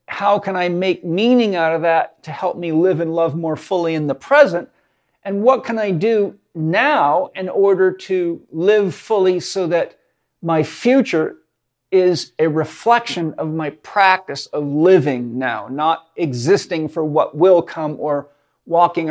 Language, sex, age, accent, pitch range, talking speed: English, male, 50-69, American, 155-185 Hz, 160 wpm